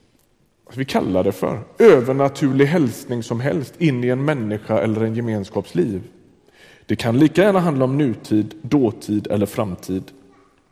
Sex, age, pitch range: male, 30-49, 120-160 Hz